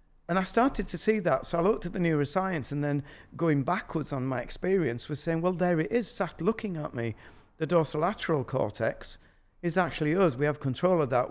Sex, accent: male, British